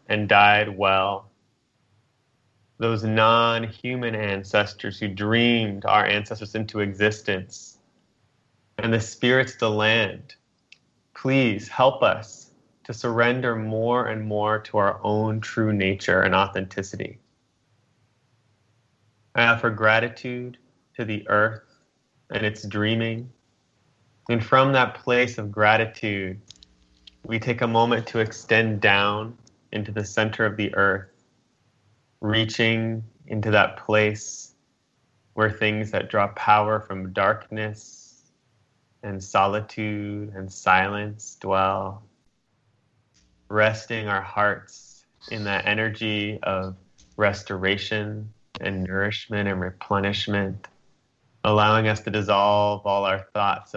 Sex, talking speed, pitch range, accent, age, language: male, 105 wpm, 100-115 Hz, American, 30-49, English